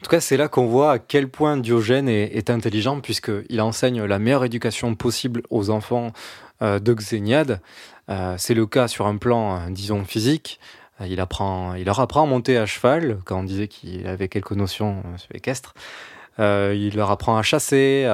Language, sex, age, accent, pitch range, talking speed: French, male, 20-39, French, 100-125 Hz, 190 wpm